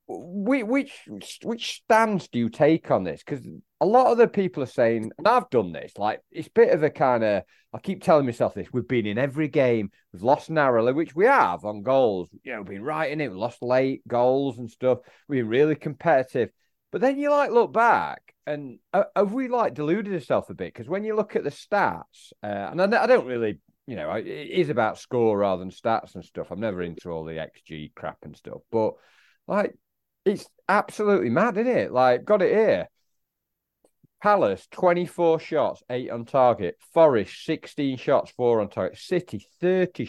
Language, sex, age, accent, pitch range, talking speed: English, male, 30-49, British, 115-190 Hz, 200 wpm